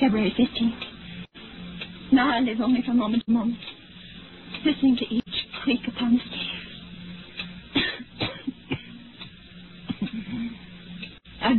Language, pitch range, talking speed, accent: English, 190-270 Hz, 95 wpm, American